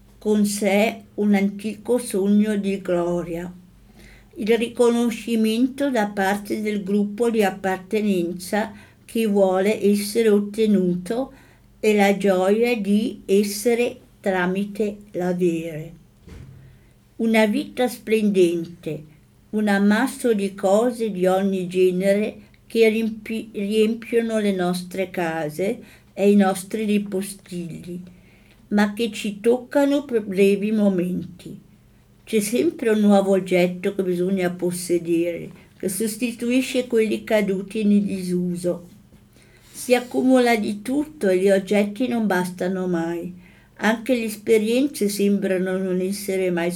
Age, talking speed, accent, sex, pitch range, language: 60-79, 105 wpm, American, female, 185-225 Hz, Italian